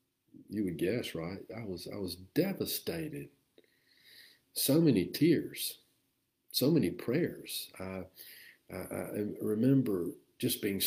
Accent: American